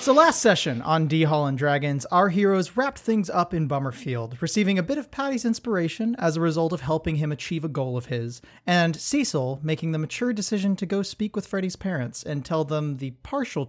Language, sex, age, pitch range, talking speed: English, male, 30-49, 135-195 Hz, 210 wpm